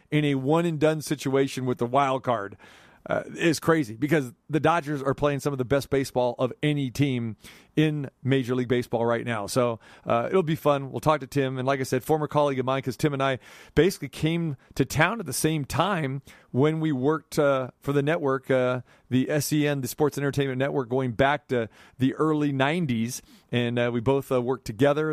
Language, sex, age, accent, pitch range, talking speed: English, male, 40-59, American, 120-150 Hz, 205 wpm